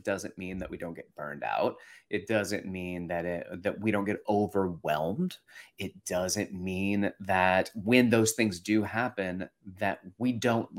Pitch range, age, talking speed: 95-120 Hz, 30-49, 165 wpm